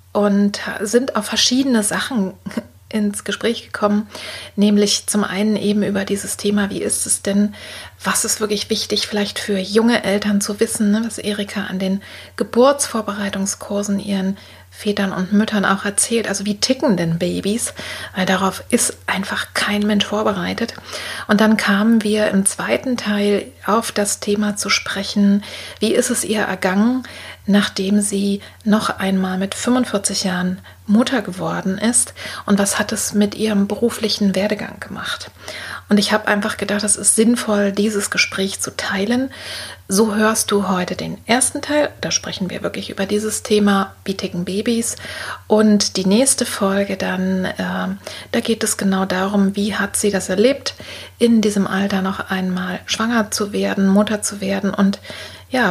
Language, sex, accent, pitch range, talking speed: German, female, German, 195-220 Hz, 155 wpm